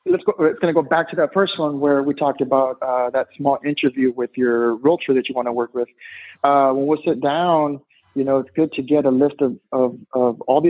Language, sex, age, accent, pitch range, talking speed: English, male, 30-49, American, 125-155 Hz, 260 wpm